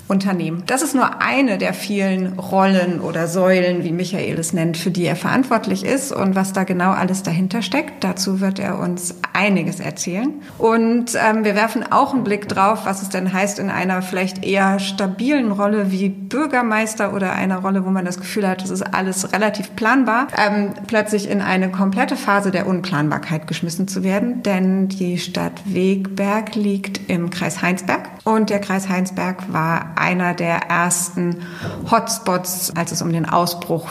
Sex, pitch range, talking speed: female, 175-210 Hz, 175 wpm